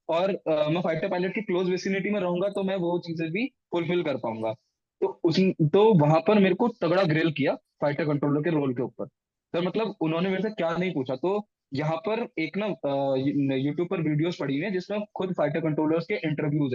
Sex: male